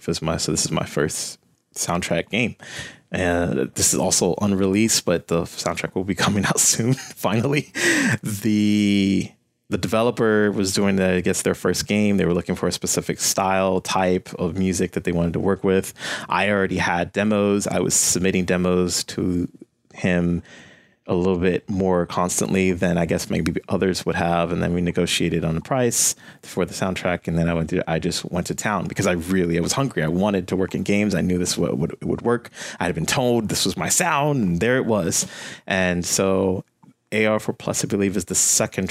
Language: English